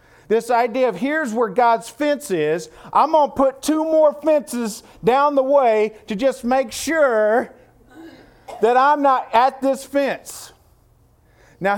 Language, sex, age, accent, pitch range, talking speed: English, male, 40-59, American, 175-270 Hz, 150 wpm